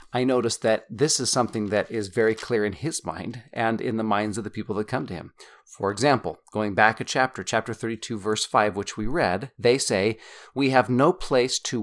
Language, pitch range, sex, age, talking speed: English, 110-130 Hz, male, 40-59, 225 wpm